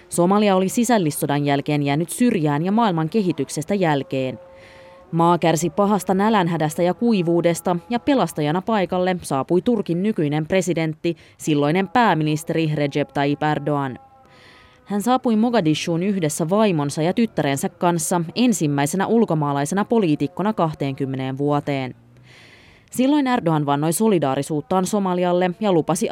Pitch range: 140-195 Hz